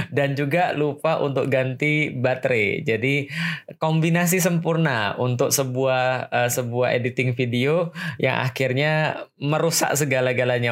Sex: male